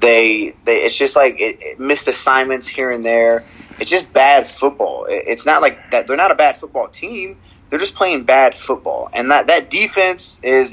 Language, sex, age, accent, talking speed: English, male, 20-39, American, 205 wpm